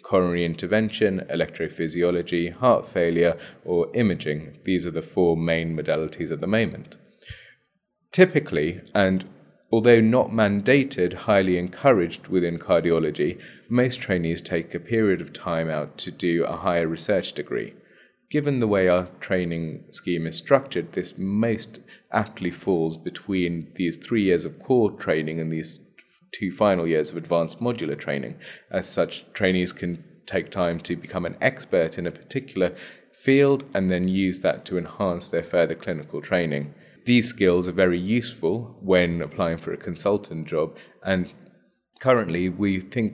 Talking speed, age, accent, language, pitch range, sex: 145 wpm, 30-49, British, English, 85-105 Hz, male